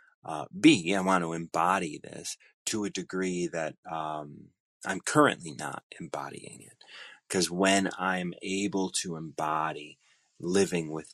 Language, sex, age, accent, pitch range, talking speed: English, male, 30-49, American, 80-100 Hz, 135 wpm